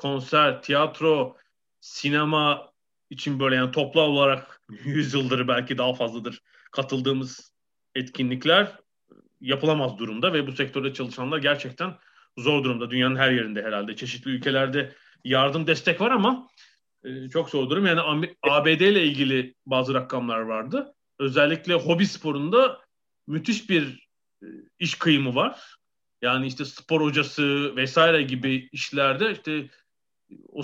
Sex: male